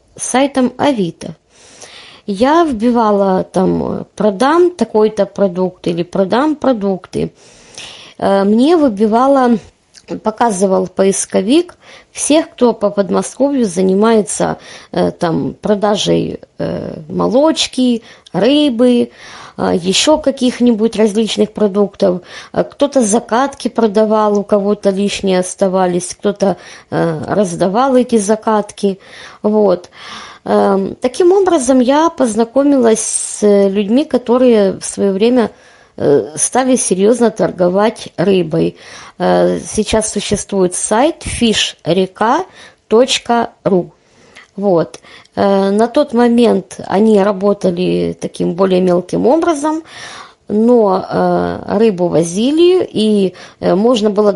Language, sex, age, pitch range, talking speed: Russian, female, 20-39, 190-245 Hz, 80 wpm